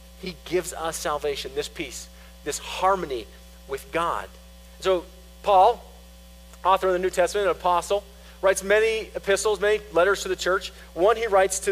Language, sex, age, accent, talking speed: English, male, 40-59, American, 160 wpm